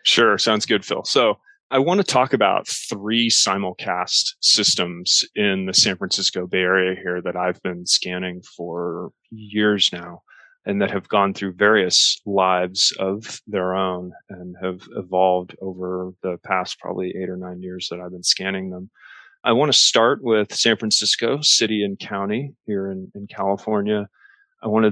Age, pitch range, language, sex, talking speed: 30-49, 90-110 Hz, English, male, 170 wpm